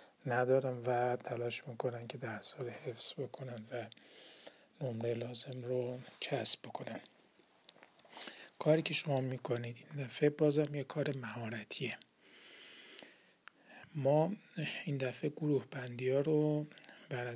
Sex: male